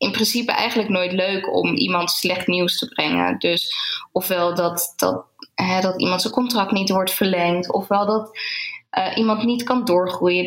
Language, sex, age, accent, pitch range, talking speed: Dutch, female, 10-29, Dutch, 180-215 Hz, 165 wpm